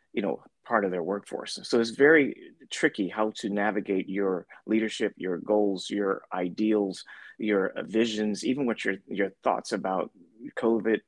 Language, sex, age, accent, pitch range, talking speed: English, male, 30-49, American, 95-115 Hz, 150 wpm